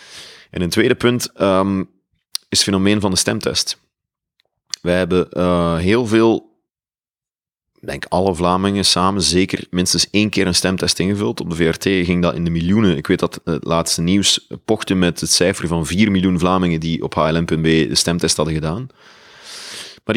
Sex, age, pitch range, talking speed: male, 30-49, 90-105 Hz, 175 wpm